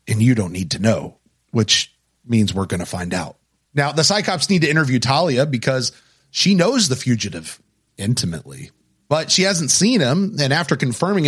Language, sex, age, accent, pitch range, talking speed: English, male, 30-49, American, 120-160 Hz, 180 wpm